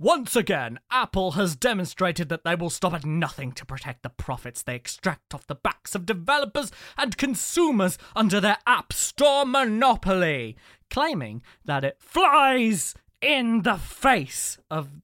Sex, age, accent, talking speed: male, 20-39, British, 150 wpm